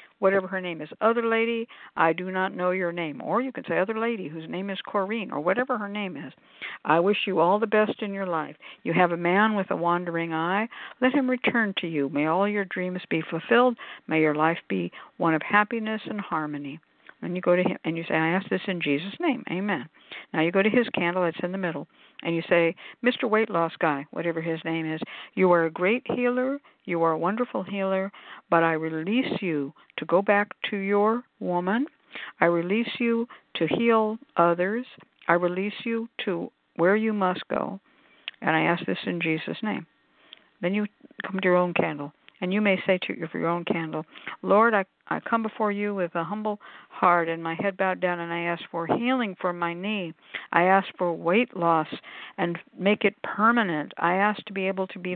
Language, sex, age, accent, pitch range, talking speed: English, female, 60-79, American, 170-215 Hz, 210 wpm